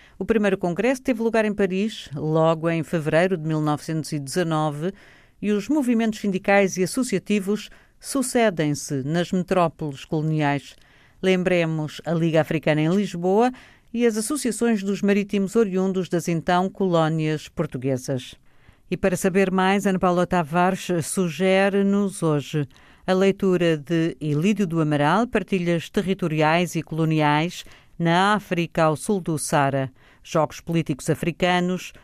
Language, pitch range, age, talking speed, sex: Portuguese, 155-200 Hz, 50-69, 125 wpm, female